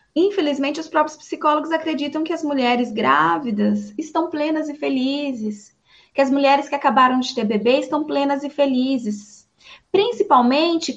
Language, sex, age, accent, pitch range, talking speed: Portuguese, female, 20-39, Brazilian, 225-300 Hz, 140 wpm